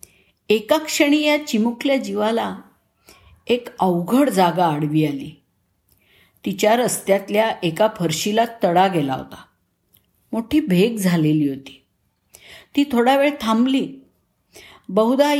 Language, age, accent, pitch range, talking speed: Marathi, 50-69, native, 170-240 Hz, 95 wpm